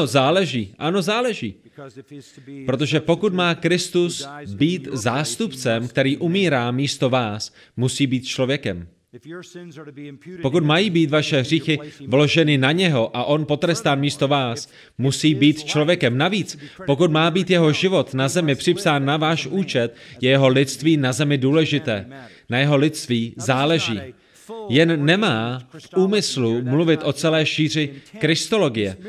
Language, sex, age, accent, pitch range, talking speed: Czech, male, 30-49, native, 130-165 Hz, 130 wpm